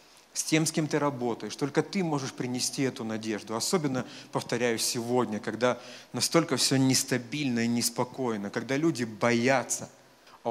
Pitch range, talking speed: 125-150 Hz, 145 wpm